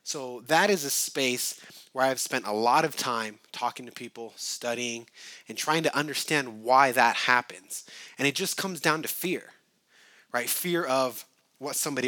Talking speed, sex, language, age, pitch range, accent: 175 wpm, male, English, 20-39, 125-160 Hz, American